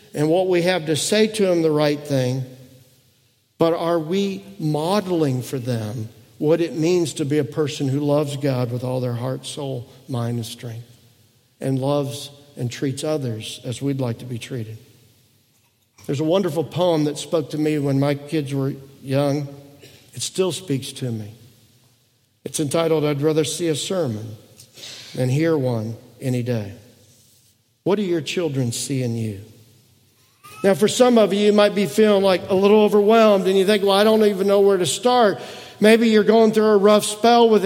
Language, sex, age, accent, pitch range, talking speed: English, male, 50-69, American, 125-190 Hz, 185 wpm